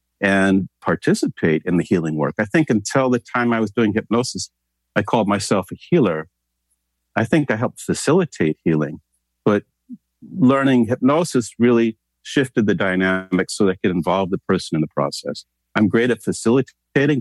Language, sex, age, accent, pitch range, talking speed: English, male, 50-69, American, 80-110 Hz, 165 wpm